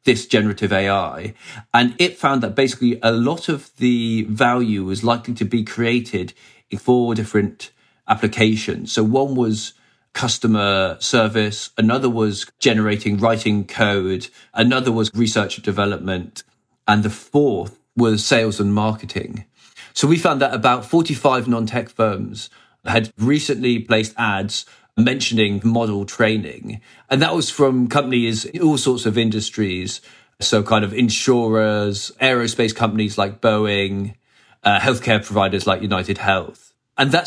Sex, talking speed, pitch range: male, 135 wpm, 105-120 Hz